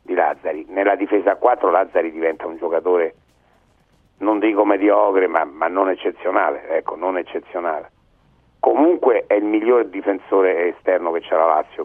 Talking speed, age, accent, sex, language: 150 wpm, 60-79, native, male, Italian